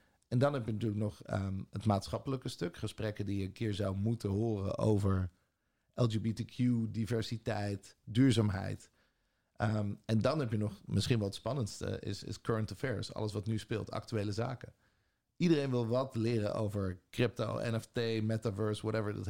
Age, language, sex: 50-69, Dutch, male